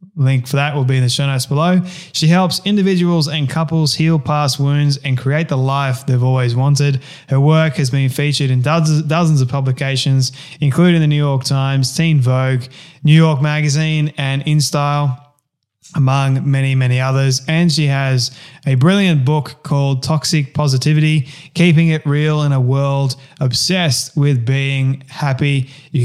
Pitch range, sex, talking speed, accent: 130-150 Hz, male, 165 wpm, Australian